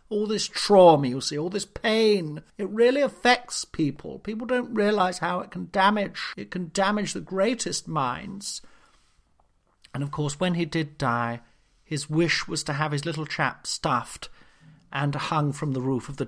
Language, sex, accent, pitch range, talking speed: English, male, British, 135-205 Hz, 175 wpm